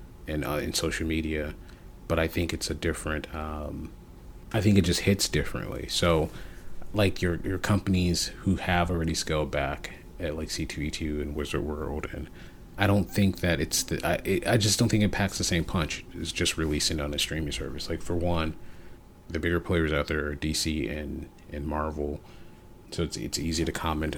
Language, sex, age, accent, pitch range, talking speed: English, male, 30-49, American, 75-90 Hz, 195 wpm